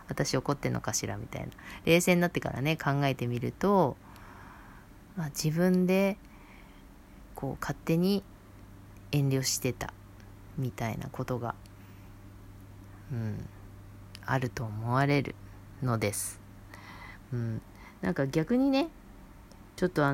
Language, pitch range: Japanese, 100-165 Hz